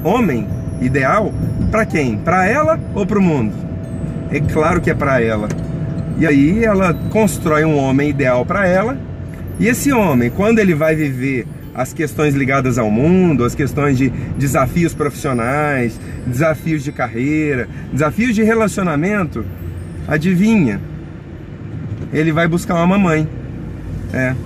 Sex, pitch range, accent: male, 130-180 Hz, Brazilian